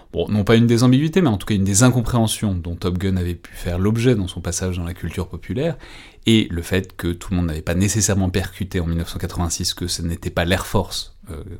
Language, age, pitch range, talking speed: French, 30-49, 85-105 Hz, 245 wpm